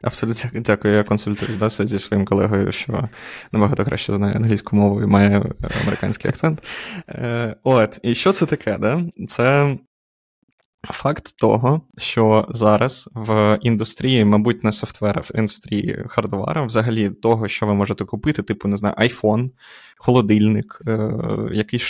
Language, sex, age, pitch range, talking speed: Ukrainian, male, 20-39, 105-115 Hz, 135 wpm